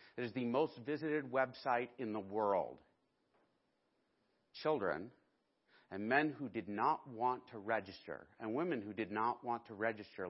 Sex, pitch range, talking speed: male, 95-125 Hz, 150 wpm